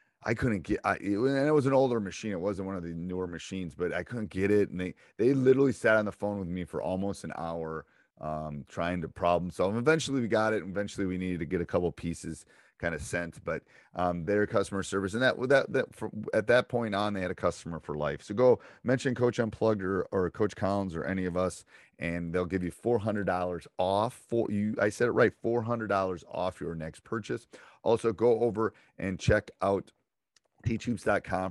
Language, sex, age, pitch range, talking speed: English, male, 30-49, 85-105 Hz, 230 wpm